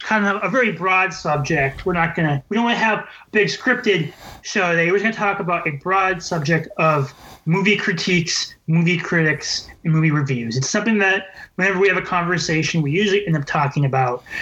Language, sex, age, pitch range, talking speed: English, male, 30-49, 155-190 Hz, 210 wpm